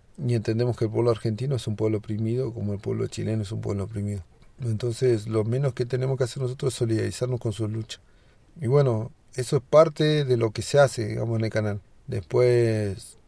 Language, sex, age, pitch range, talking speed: German, male, 40-59, 110-125 Hz, 210 wpm